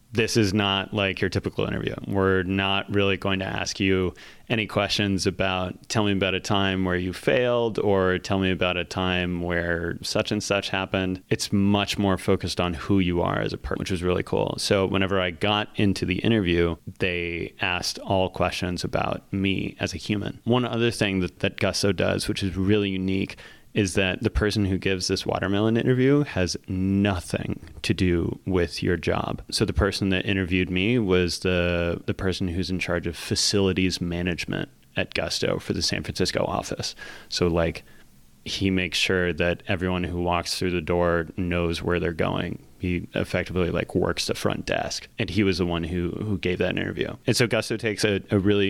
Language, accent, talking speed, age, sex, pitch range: English, American, 195 wpm, 30-49, male, 90-100 Hz